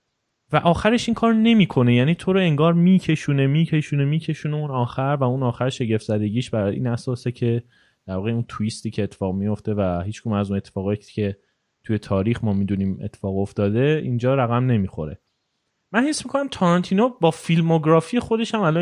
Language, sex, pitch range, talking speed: Persian, male, 110-155 Hz, 180 wpm